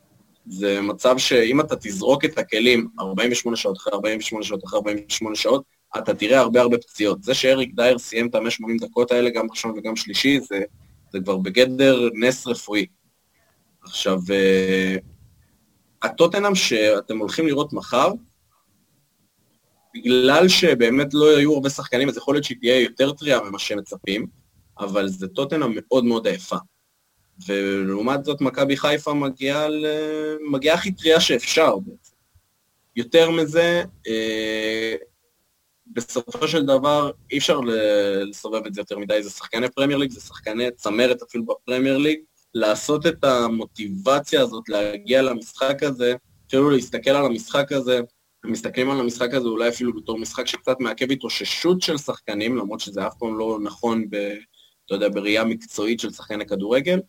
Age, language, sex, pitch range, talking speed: 20-39, Hebrew, male, 110-140 Hz, 145 wpm